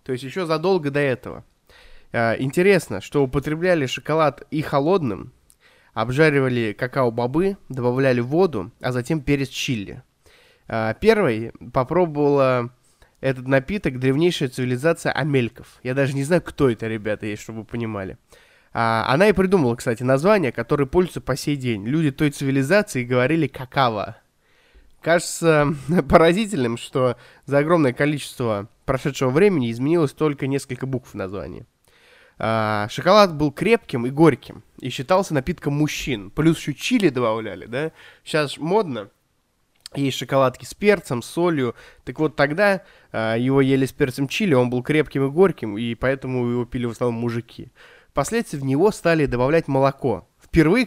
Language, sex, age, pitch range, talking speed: Russian, male, 20-39, 125-160 Hz, 135 wpm